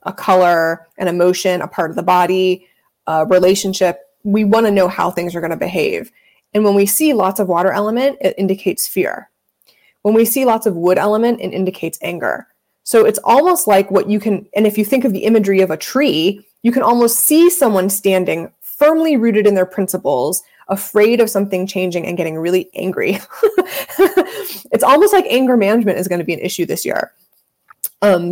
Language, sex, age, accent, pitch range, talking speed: English, female, 20-39, American, 180-230 Hz, 195 wpm